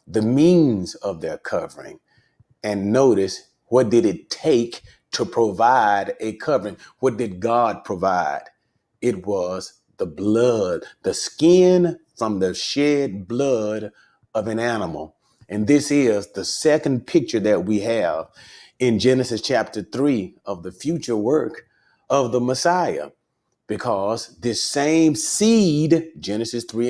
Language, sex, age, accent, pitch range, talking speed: English, male, 30-49, American, 110-150 Hz, 130 wpm